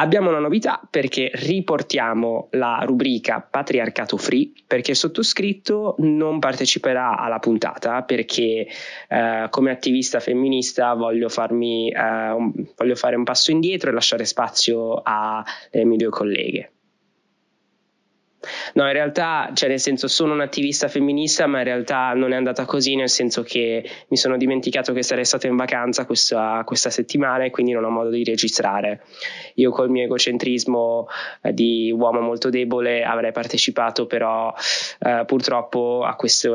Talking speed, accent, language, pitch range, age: 150 wpm, native, Italian, 115-130 Hz, 20-39